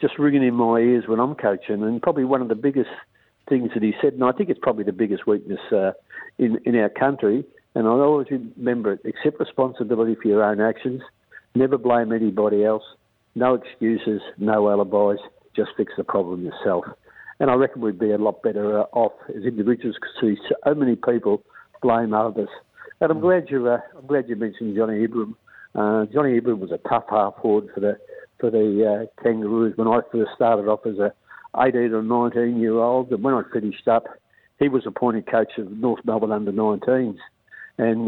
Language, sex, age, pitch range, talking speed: English, male, 60-79, 110-125 Hz, 190 wpm